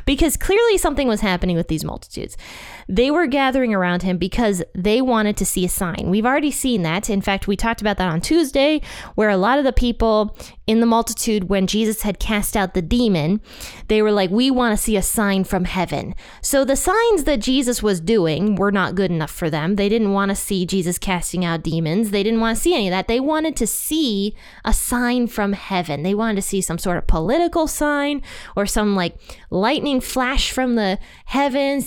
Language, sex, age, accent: English, female, 20-39, American